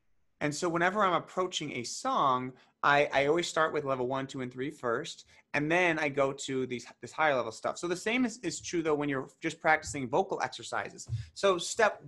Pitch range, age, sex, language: 130-165 Hz, 30-49, male, English